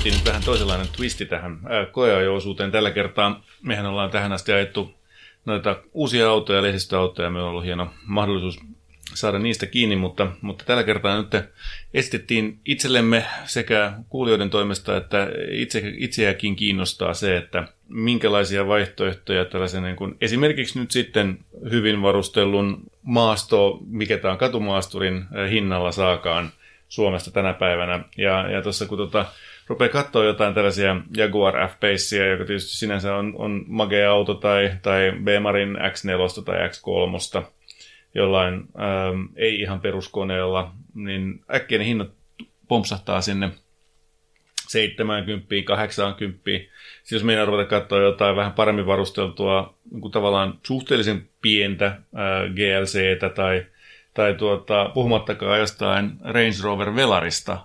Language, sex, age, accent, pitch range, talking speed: Finnish, male, 30-49, native, 95-105 Hz, 125 wpm